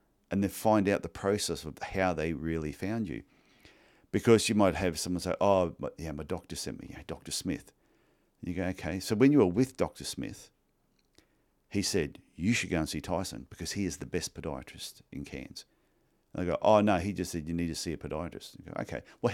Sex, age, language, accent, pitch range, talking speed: male, 50-69, English, Australian, 80-100 Hz, 225 wpm